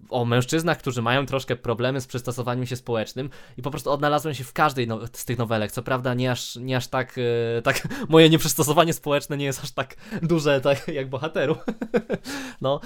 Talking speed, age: 195 wpm, 20-39